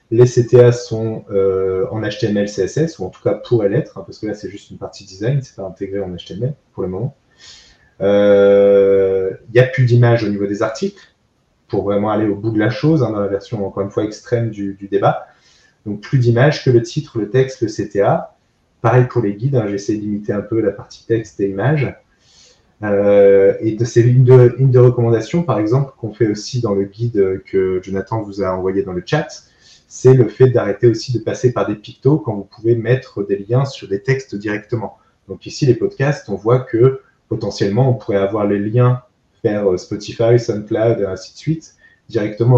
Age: 30-49